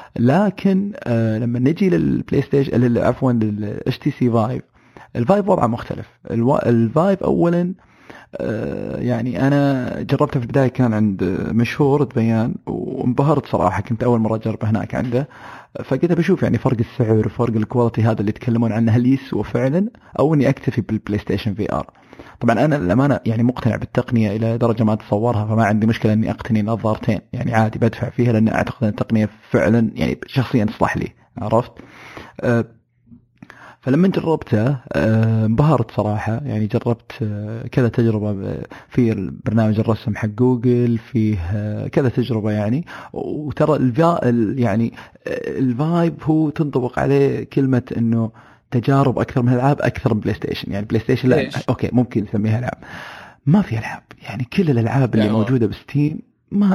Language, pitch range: Arabic, 110-135 Hz